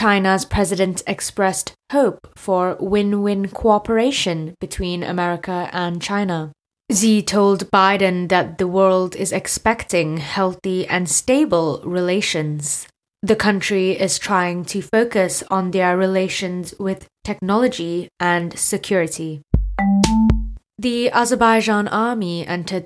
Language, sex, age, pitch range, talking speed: English, female, 20-39, 175-205 Hz, 105 wpm